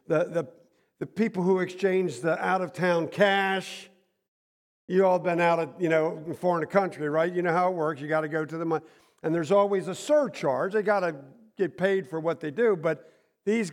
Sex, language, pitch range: male, English, 145-180 Hz